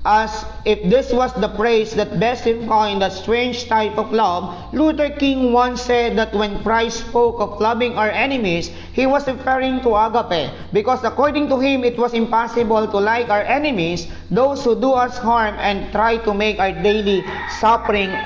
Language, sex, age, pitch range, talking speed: English, male, 40-59, 205-245 Hz, 175 wpm